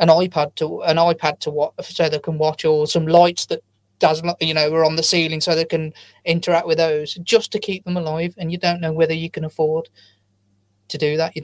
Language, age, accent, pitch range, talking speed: English, 30-49, British, 155-205 Hz, 235 wpm